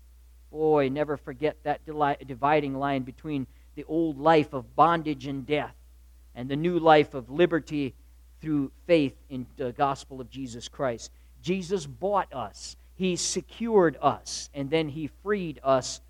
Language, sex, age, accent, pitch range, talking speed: English, male, 50-69, American, 130-195 Hz, 145 wpm